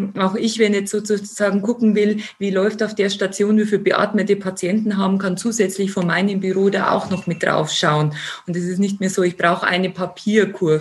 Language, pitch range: German, 175-195 Hz